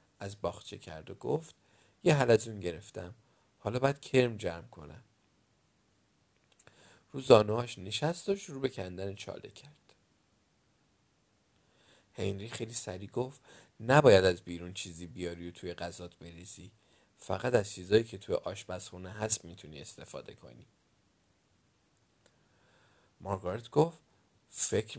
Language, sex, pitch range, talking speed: Persian, male, 90-130 Hz, 120 wpm